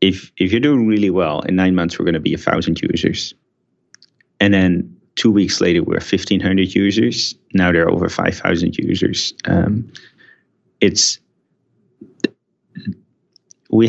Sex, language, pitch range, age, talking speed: male, English, 90-110 Hz, 30-49, 140 wpm